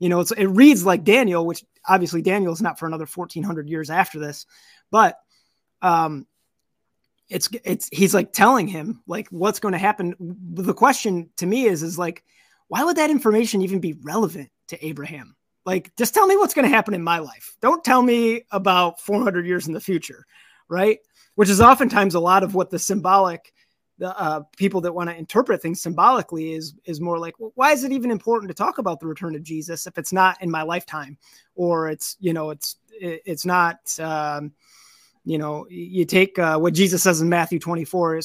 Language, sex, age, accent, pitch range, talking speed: English, male, 20-39, American, 165-210 Hz, 200 wpm